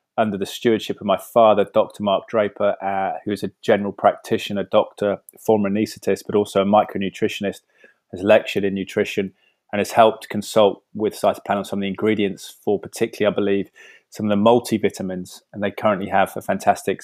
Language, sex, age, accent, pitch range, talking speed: English, male, 20-39, British, 100-110 Hz, 185 wpm